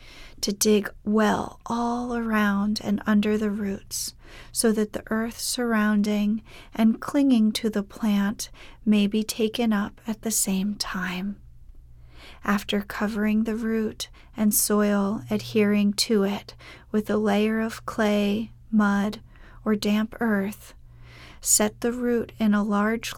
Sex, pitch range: female, 205-225 Hz